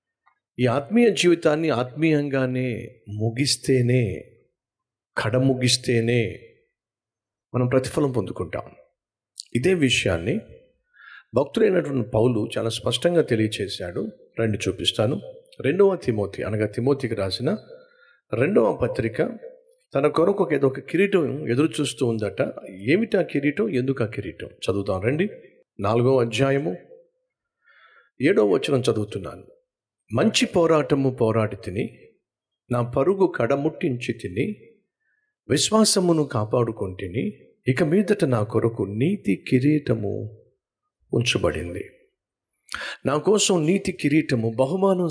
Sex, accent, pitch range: male, native, 115-185 Hz